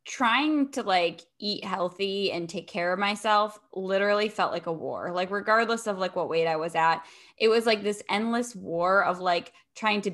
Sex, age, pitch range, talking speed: female, 10-29, 180-210 Hz, 200 wpm